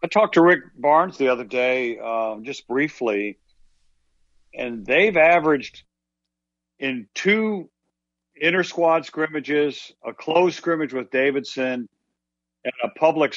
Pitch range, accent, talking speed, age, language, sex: 115-155 Hz, American, 115 wpm, 60-79, English, male